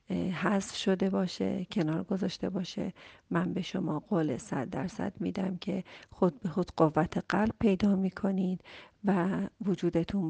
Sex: female